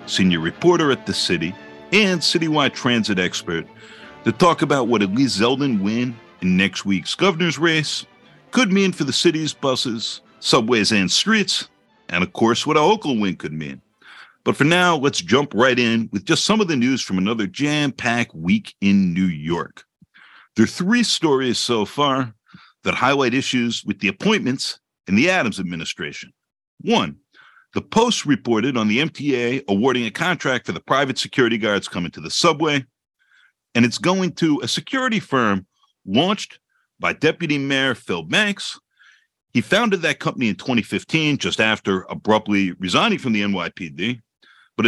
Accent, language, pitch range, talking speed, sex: American, English, 110-165 Hz, 165 wpm, male